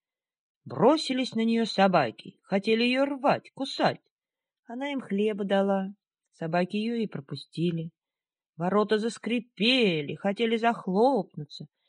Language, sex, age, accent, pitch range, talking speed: Russian, female, 30-49, native, 180-255 Hz, 100 wpm